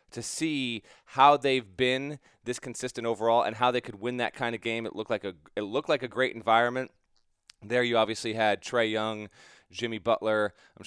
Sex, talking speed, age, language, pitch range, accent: male, 200 wpm, 30-49, English, 110-130 Hz, American